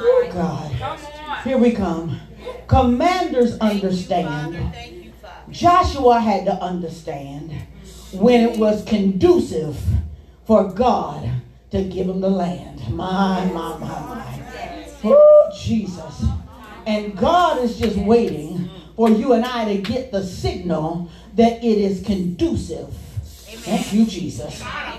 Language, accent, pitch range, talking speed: English, American, 195-255 Hz, 115 wpm